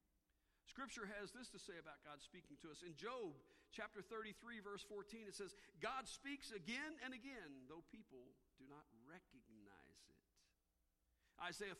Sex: male